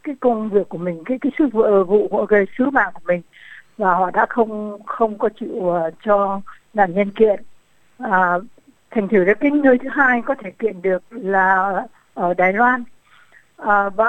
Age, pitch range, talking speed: 60-79, 190-235 Hz, 185 wpm